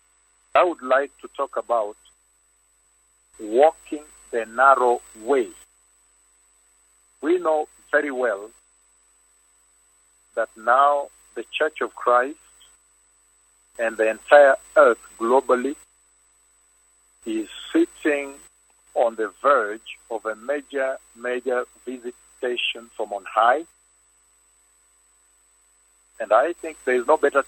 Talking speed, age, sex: 100 wpm, 50-69, male